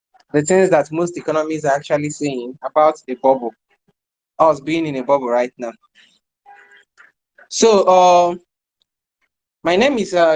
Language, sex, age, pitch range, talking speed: English, male, 20-39, 140-175 Hz, 140 wpm